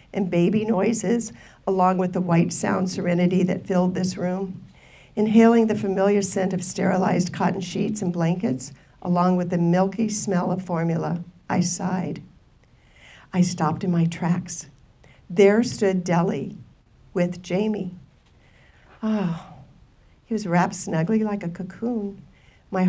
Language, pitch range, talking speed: English, 175-205 Hz, 135 wpm